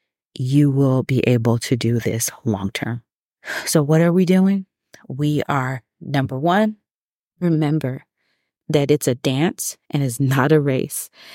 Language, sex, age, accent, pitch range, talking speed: English, female, 30-49, American, 135-160 Hz, 150 wpm